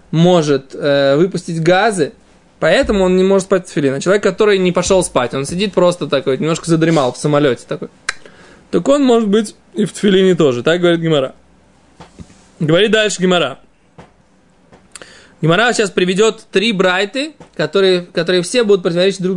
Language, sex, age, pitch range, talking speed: Russian, male, 20-39, 165-215 Hz, 155 wpm